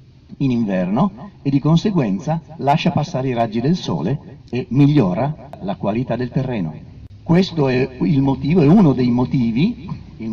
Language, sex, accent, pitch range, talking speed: Italian, male, native, 125-175 Hz, 150 wpm